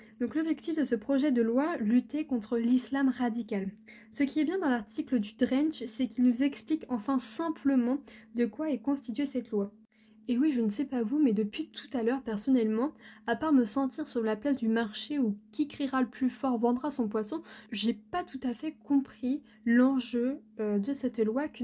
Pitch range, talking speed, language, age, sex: 220-275 Hz, 200 wpm, French, 20-39, female